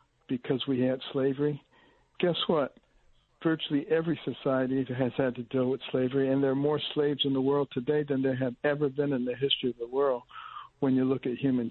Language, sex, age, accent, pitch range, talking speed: English, male, 60-79, American, 130-145 Hz, 205 wpm